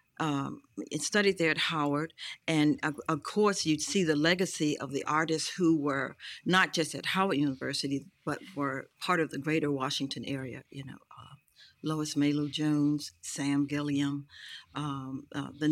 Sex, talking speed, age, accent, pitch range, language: female, 165 wpm, 60-79, American, 140-165 Hz, English